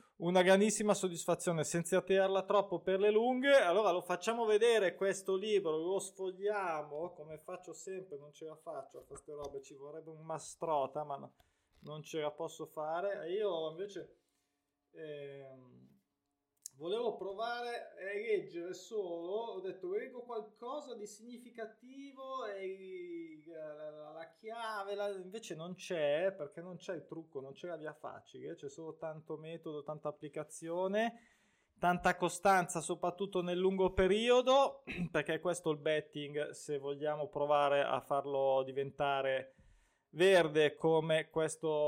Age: 20-39